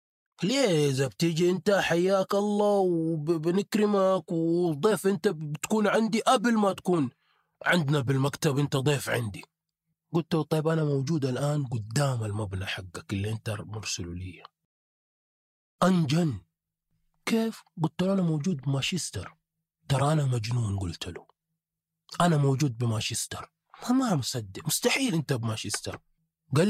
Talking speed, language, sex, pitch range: 115 wpm, Arabic, male, 125-185 Hz